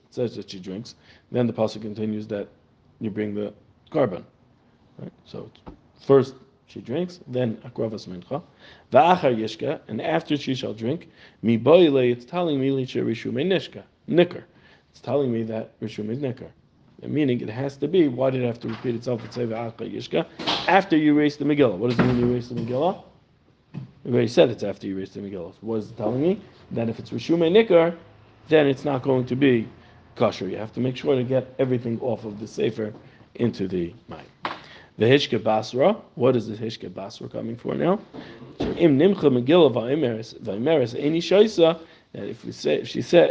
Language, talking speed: English, 175 wpm